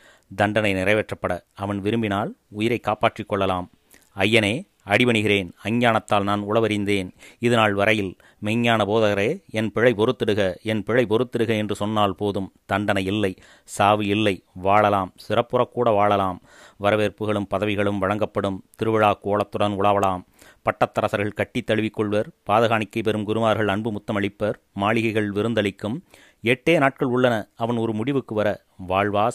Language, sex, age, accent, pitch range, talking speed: Tamil, male, 30-49, native, 100-115 Hz, 115 wpm